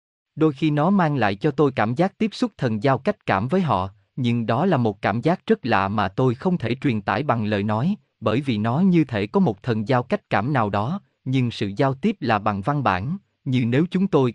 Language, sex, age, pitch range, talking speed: Vietnamese, male, 20-39, 115-160 Hz, 245 wpm